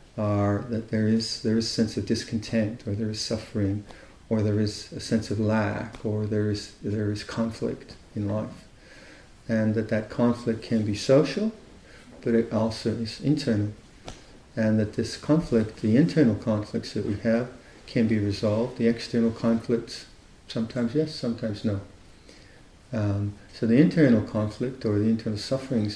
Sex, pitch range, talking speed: male, 105-120 Hz, 155 wpm